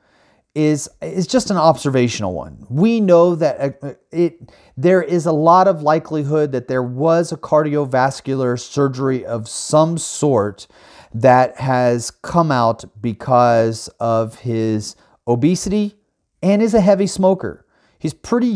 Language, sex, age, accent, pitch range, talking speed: English, male, 30-49, American, 125-165 Hz, 130 wpm